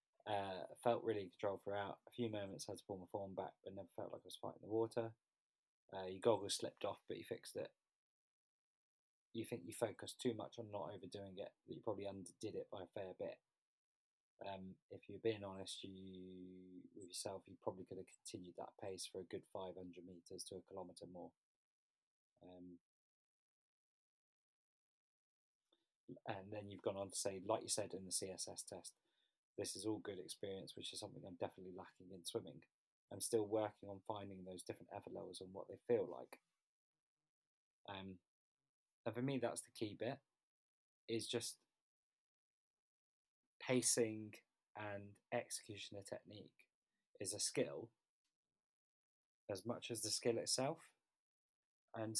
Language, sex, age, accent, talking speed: English, male, 20-39, British, 165 wpm